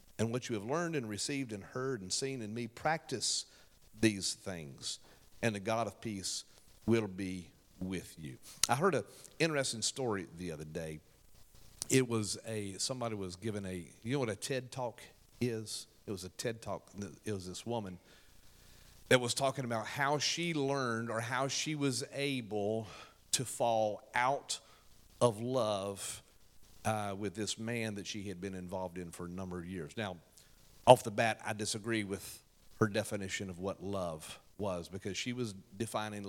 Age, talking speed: 50-69, 175 wpm